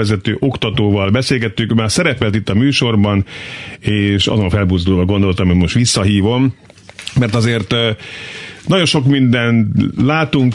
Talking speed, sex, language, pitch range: 120 wpm, male, Hungarian, 105-135 Hz